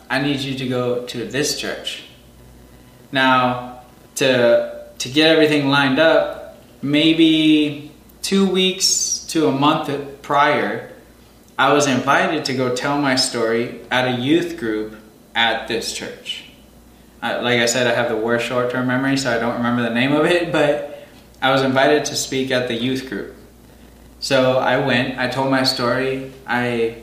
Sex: male